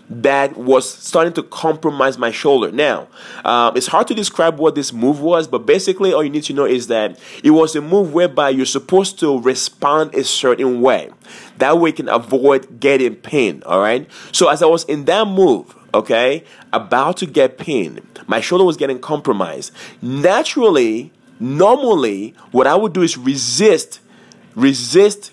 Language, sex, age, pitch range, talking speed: English, male, 30-49, 130-185 Hz, 175 wpm